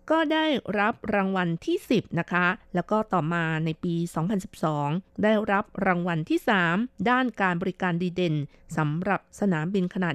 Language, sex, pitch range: Thai, female, 175-220 Hz